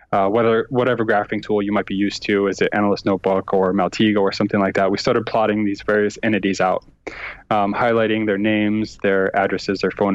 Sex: male